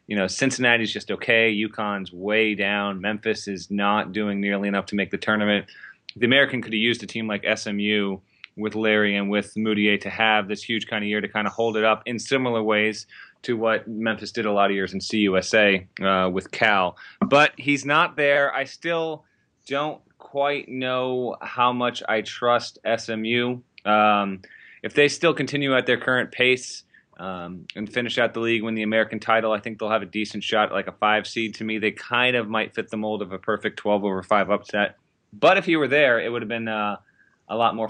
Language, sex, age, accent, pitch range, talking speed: English, male, 30-49, American, 105-120 Hz, 210 wpm